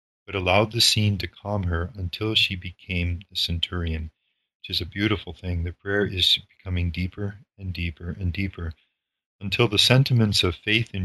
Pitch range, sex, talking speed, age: 85-105 Hz, male, 175 wpm, 40-59